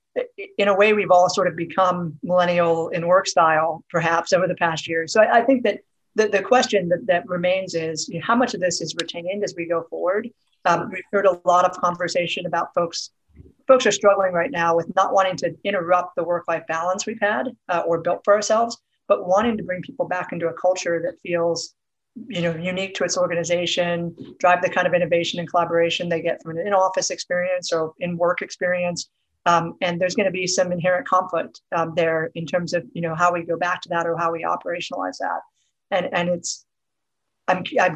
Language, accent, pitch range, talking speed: English, American, 170-195 Hz, 215 wpm